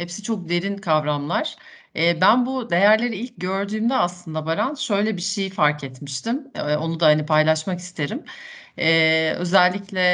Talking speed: 150 wpm